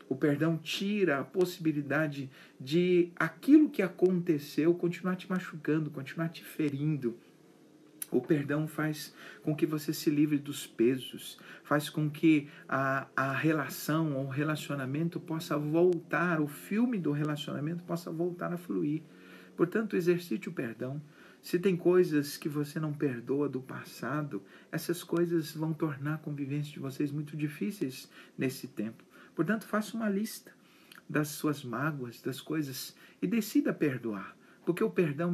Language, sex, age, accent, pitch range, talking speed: Portuguese, male, 50-69, Brazilian, 145-175 Hz, 145 wpm